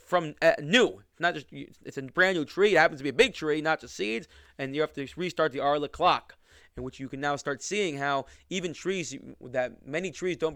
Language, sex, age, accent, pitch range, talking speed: English, male, 20-39, American, 145-180 Hz, 240 wpm